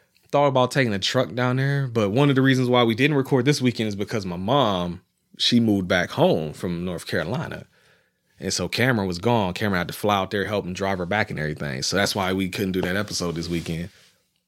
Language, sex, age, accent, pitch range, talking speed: English, male, 30-49, American, 100-135 Hz, 235 wpm